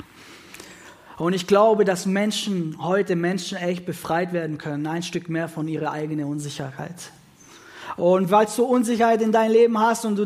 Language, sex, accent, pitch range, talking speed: German, male, German, 160-200 Hz, 165 wpm